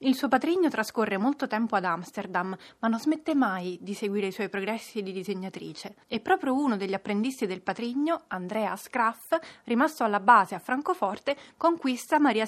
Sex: female